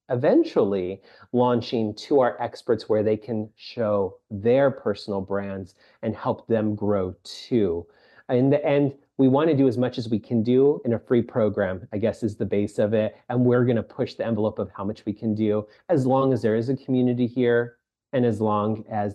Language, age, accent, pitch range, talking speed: English, 30-49, American, 110-140 Hz, 205 wpm